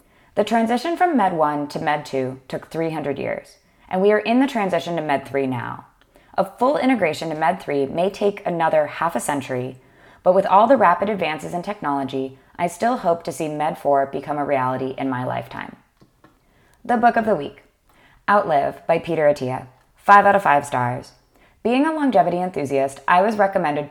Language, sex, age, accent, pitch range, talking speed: English, female, 20-39, American, 140-195 Hz, 190 wpm